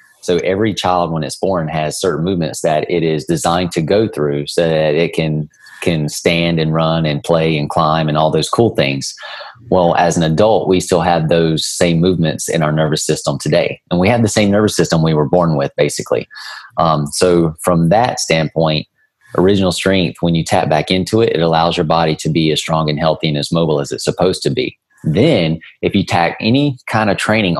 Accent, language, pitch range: American, English, 75-85 Hz